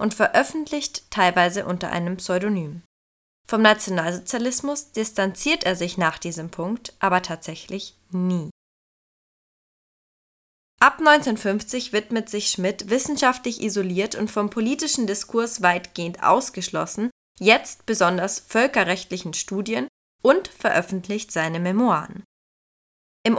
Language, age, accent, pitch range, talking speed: German, 20-39, German, 185-240 Hz, 100 wpm